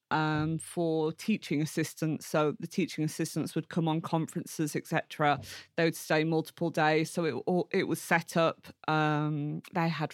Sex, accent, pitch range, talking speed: female, British, 160-190 Hz, 165 wpm